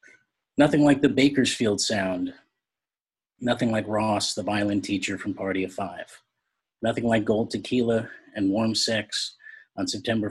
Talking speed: 140 wpm